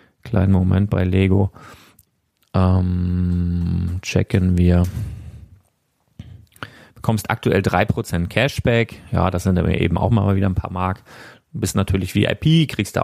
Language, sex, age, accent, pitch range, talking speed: German, male, 30-49, German, 95-120 Hz, 125 wpm